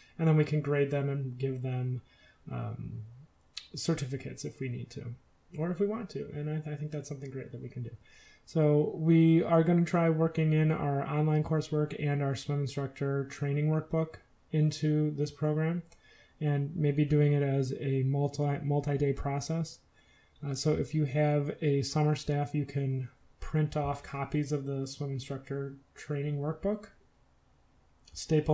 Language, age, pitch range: English, 30-49, 140-155 Hz